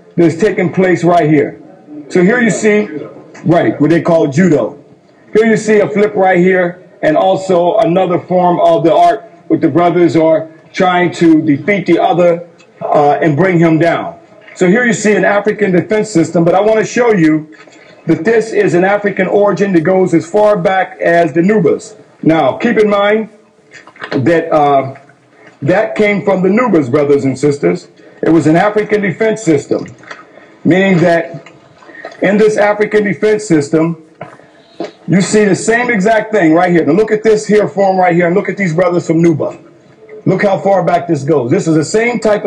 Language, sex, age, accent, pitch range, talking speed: English, male, 50-69, American, 160-205 Hz, 185 wpm